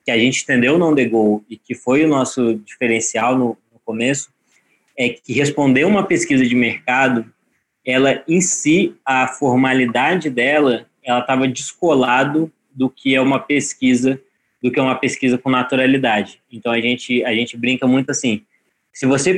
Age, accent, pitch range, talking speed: 20-39, Brazilian, 120-140 Hz, 165 wpm